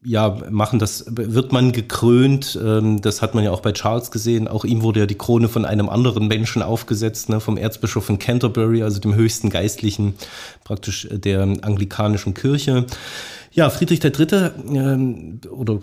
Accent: German